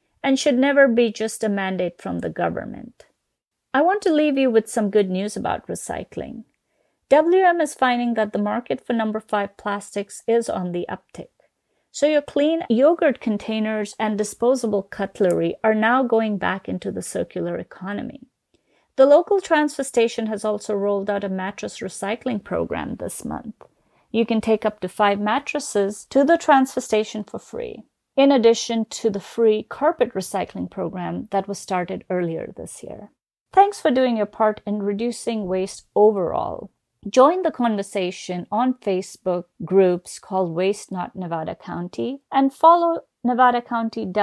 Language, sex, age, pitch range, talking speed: English, female, 30-49, 200-260 Hz, 155 wpm